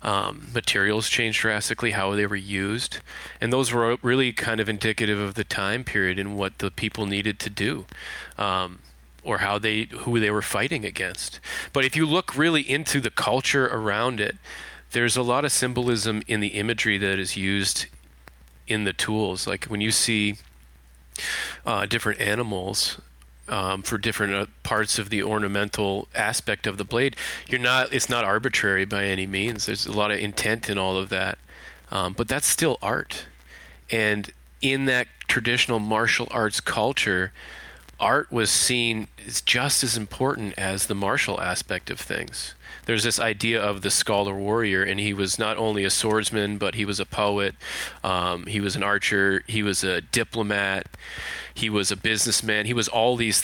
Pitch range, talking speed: 100-115 Hz, 180 wpm